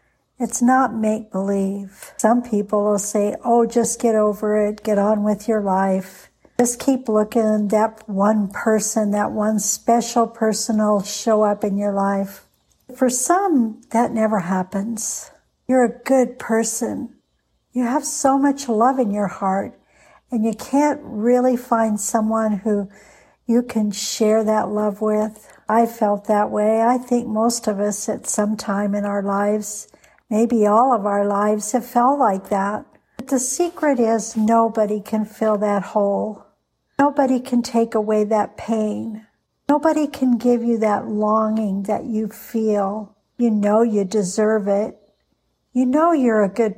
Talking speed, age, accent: 155 wpm, 60-79, American